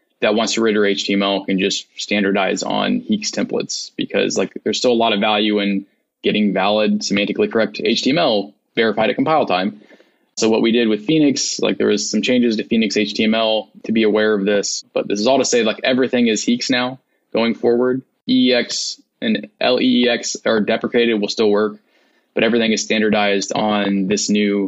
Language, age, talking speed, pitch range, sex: English, 20-39, 185 wpm, 105-125 Hz, male